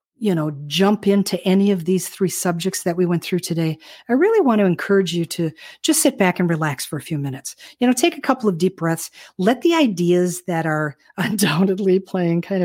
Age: 50-69